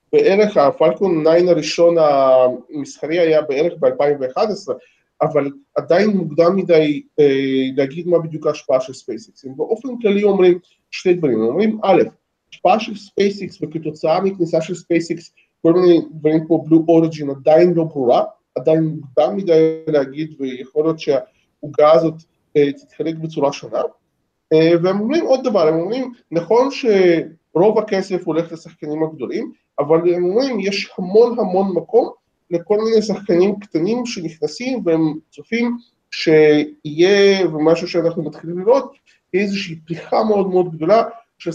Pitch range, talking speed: 160-200 Hz, 135 wpm